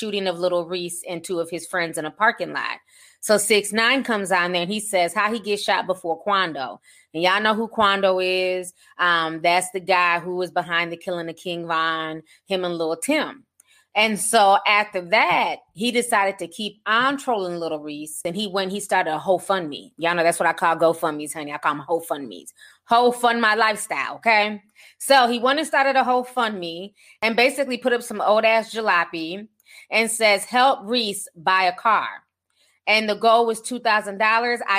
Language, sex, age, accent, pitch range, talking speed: English, female, 20-39, American, 175-225 Hz, 205 wpm